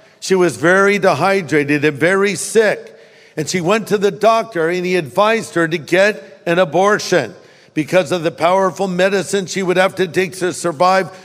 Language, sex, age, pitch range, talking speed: English, male, 50-69, 145-185 Hz, 175 wpm